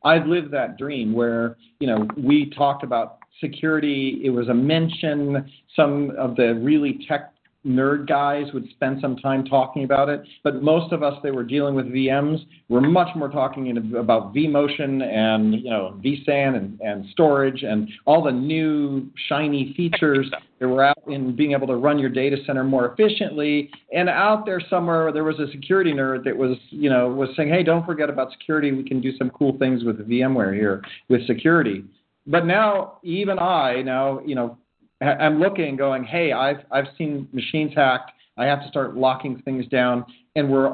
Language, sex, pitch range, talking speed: English, male, 130-155 Hz, 185 wpm